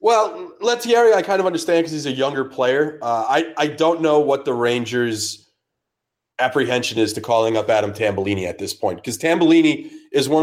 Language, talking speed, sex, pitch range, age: English, 190 wpm, male, 125-170 Hz, 30-49